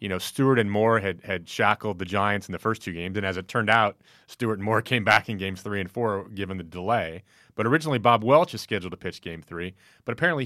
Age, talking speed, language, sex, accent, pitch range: 30-49, 260 wpm, English, male, American, 95-115 Hz